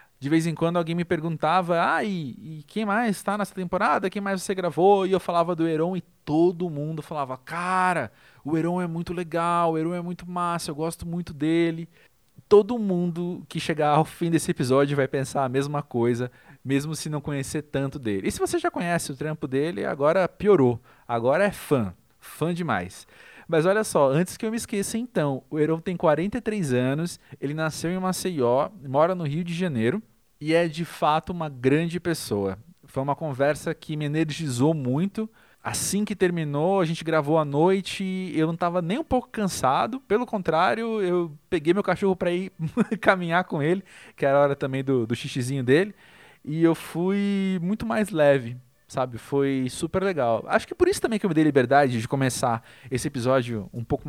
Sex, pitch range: male, 135-180 Hz